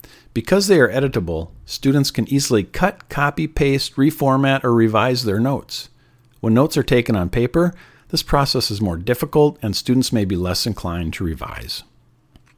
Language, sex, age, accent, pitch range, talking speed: English, male, 50-69, American, 110-140 Hz, 160 wpm